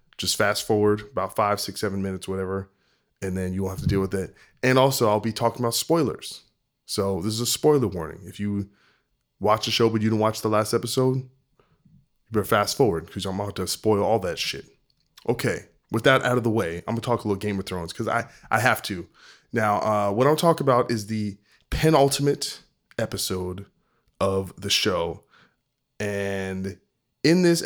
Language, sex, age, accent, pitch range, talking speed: English, male, 20-39, American, 100-120 Hz, 195 wpm